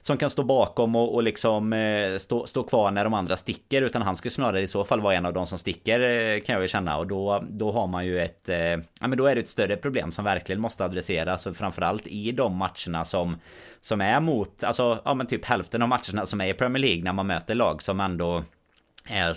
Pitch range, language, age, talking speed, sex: 90-115 Hz, Swedish, 30-49, 240 wpm, male